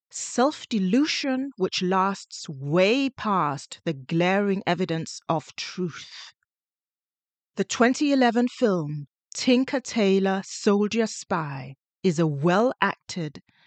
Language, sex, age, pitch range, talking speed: English, female, 40-59, 170-240 Hz, 90 wpm